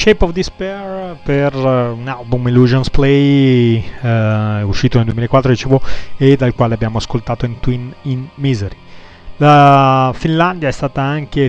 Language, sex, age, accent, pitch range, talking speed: Italian, male, 30-49, native, 115-145 Hz, 135 wpm